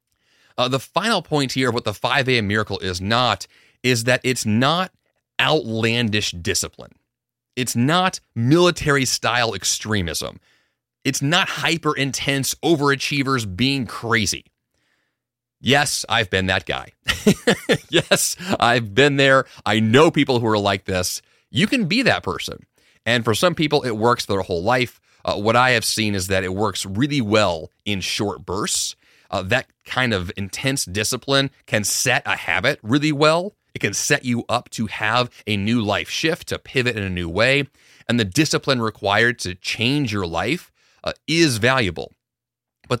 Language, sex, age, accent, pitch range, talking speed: English, male, 30-49, American, 100-135 Hz, 160 wpm